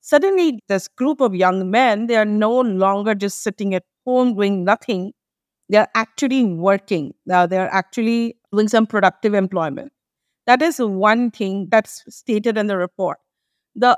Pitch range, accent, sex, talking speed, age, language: 195-245 Hz, Indian, female, 155 wpm, 50-69, English